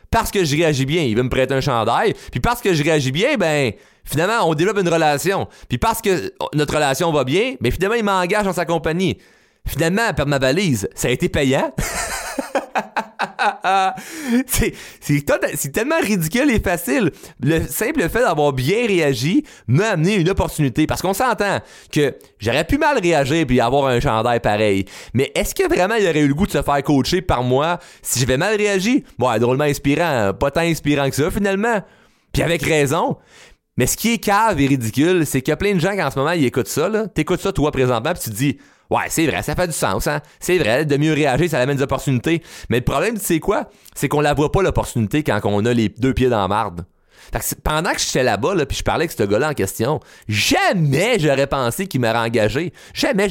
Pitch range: 125-175 Hz